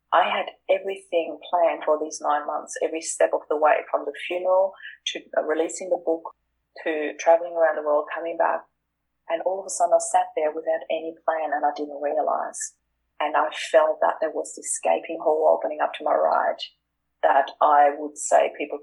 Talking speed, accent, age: 195 wpm, Australian, 30-49